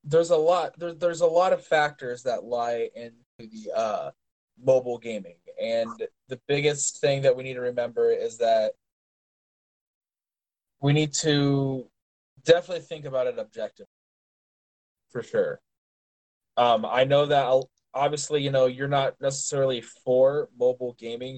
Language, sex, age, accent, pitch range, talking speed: English, male, 20-39, American, 125-170 Hz, 140 wpm